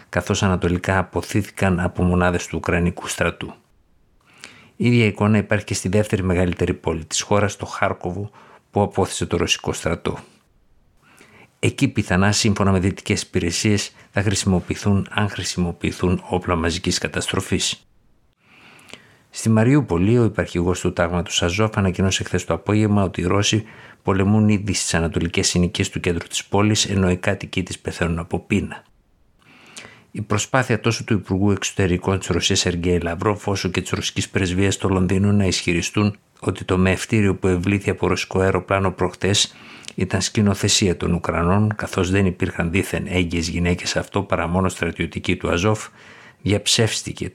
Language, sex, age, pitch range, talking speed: Greek, male, 50-69, 90-105 Hz, 140 wpm